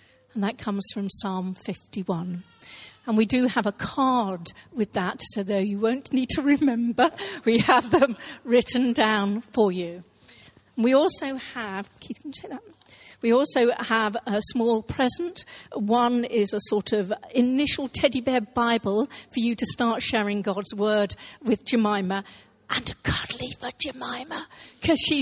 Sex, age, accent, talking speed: female, 50-69, British, 160 wpm